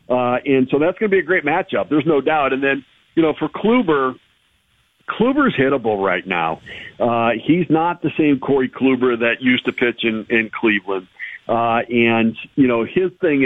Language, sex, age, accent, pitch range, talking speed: English, male, 50-69, American, 125-155 Hz, 190 wpm